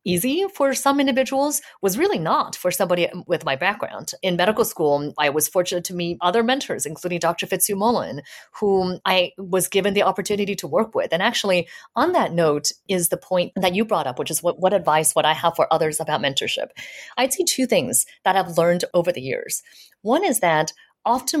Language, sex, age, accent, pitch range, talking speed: English, female, 30-49, American, 175-235 Hz, 200 wpm